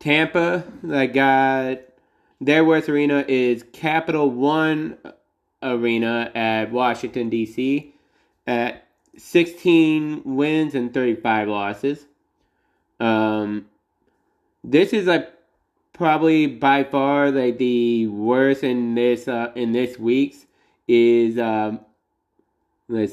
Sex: male